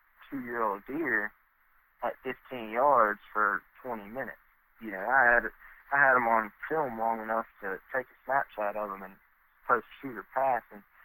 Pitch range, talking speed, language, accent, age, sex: 105-125 Hz, 165 wpm, English, American, 20-39, male